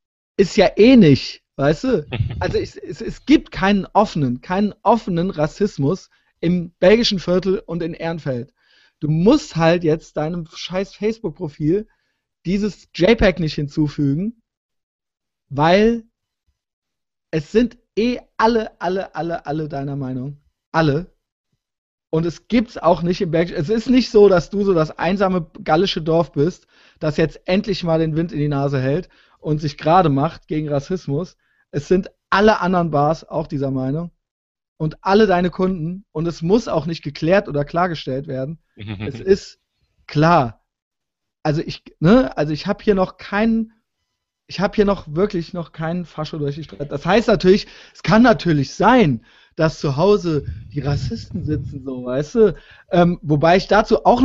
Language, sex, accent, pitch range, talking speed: German, male, German, 150-200 Hz, 160 wpm